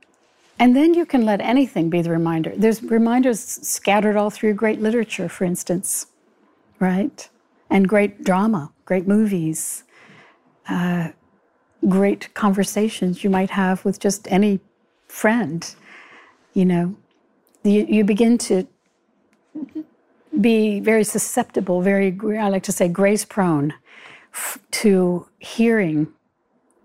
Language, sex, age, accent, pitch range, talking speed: English, female, 60-79, American, 180-215 Hz, 115 wpm